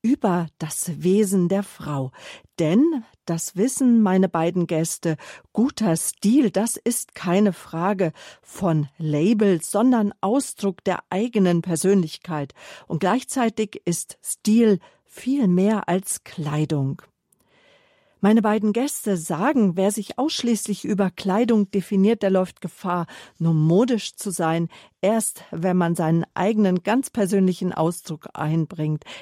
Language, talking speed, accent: German, 120 wpm, German